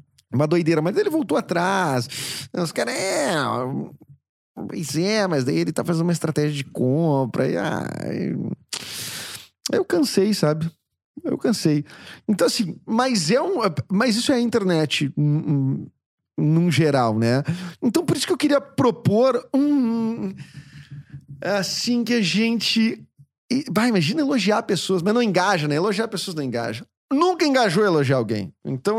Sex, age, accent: male, 40-59, Brazilian